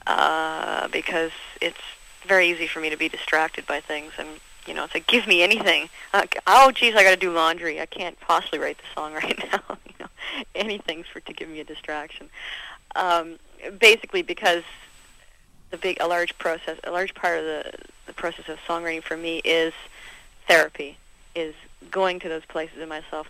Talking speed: 185 wpm